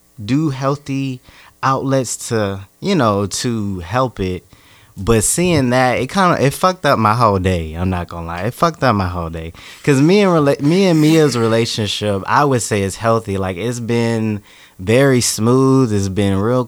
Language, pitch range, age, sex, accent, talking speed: English, 95-130 Hz, 20-39, male, American, 185 wpm